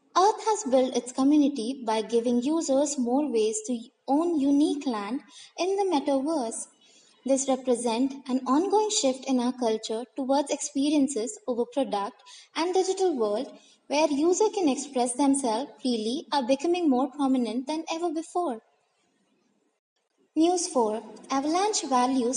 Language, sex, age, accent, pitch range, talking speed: English, female, 20-39, Indian, 250-320 Hz, 130 wpm